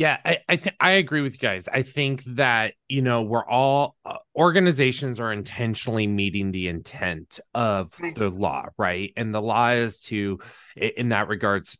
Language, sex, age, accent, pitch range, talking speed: English, male, 20-39, American, 105-135 Hz, 180 wpm